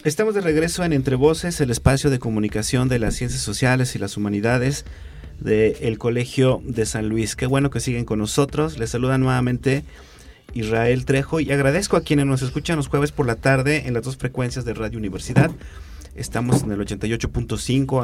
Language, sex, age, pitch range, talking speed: Spanish, male, 30-49, 105-135 Hz, 185 wpm